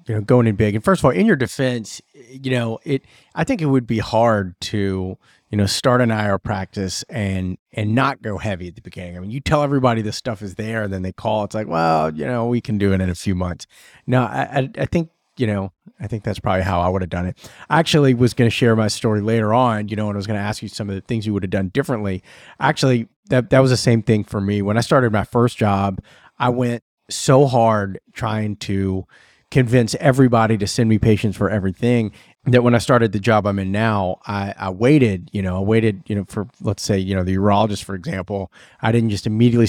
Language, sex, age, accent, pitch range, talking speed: English, male, 30-49, American, 100-125 Hz, 250 wpm